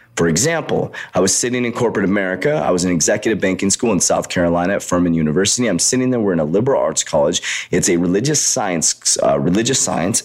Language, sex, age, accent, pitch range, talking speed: English, male, 20-39, American, 90-115 Hz, 210 wpm